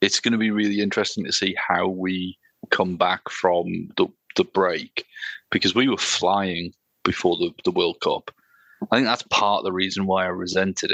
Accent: British